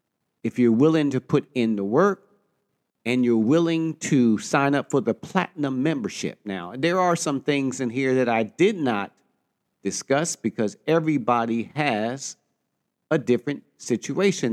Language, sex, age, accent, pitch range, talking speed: English, male, 50-69, American, 125-160 Hz, 150 wpm